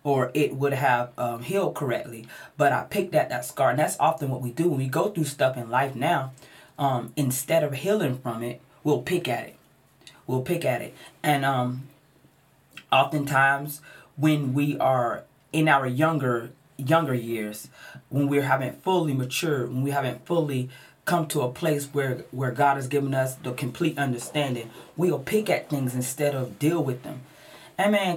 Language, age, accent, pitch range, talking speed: English, 30-49, American, 130-155 Hz, 185 wpm